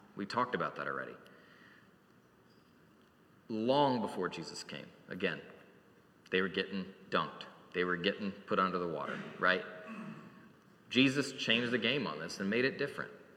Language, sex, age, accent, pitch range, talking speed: English, male, 30-49, American, 110-135 Hz, 145 wpm